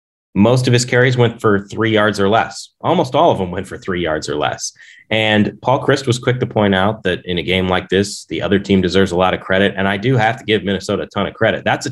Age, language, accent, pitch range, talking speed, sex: 30-49, English, American, 90-110 Hz, 275 wpm, male